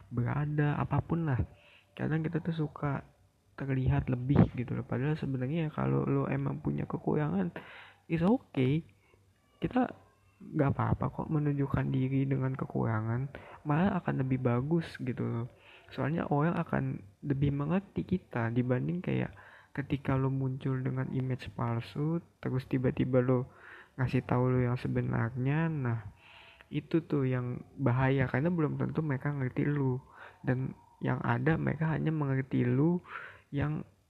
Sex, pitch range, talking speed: male, 120-145 Hz, 130 wpm